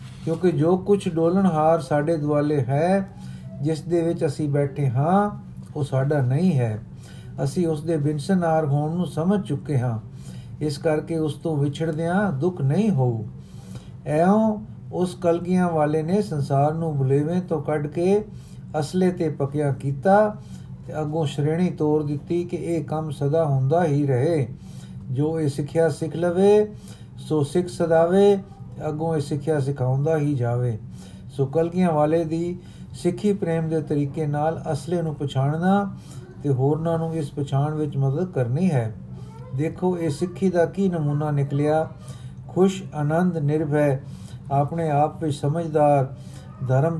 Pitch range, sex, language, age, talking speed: 140-170 Hz, male, Punjabi, 50-69, 140 wpm